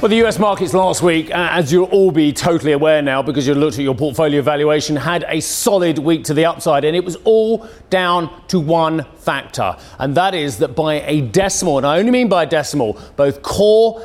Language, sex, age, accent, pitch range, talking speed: English, male, 30-49, British, 145-170 Hz, 220 wpm